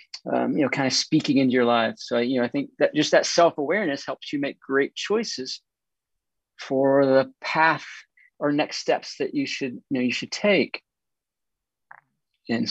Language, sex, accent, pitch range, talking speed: English, male, American, 125-145 Hz, 180 wpm